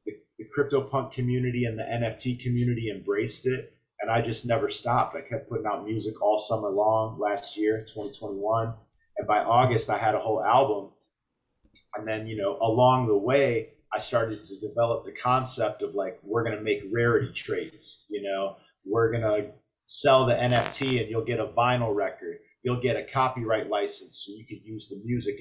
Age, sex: 30-49, male